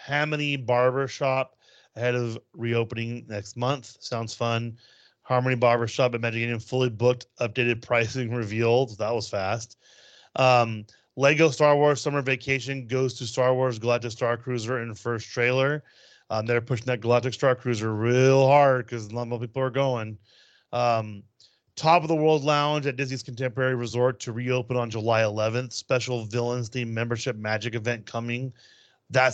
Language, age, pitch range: English, 30-49, 115-130 Hz